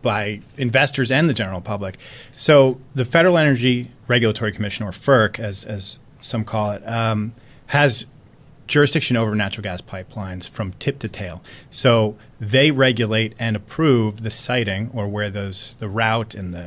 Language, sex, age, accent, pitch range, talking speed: English, male, 30-49, American, 105-130 Hz, 160 wpm